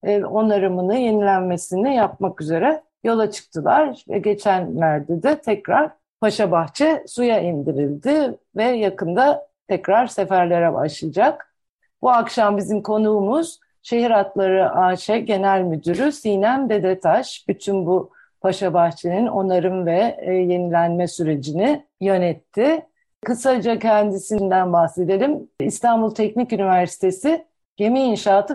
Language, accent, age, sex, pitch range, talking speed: Turkish, native, 50-69, female, 180-235 Hz, 95 wpm